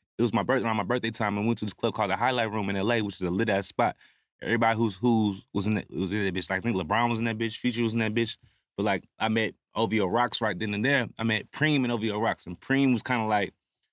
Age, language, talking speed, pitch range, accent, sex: 20-39, English, 300 wpm, 110-130 Hz, American, male